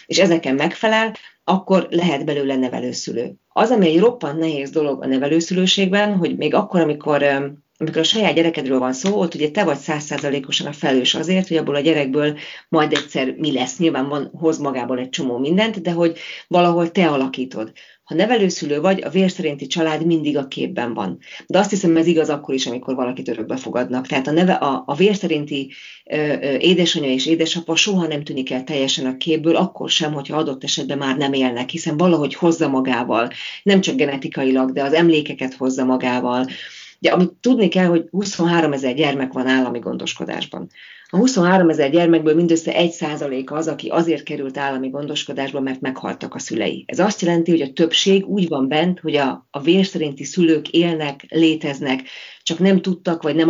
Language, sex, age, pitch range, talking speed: Hungarian, female, 40-59, 135-170 Hz, 175 wpm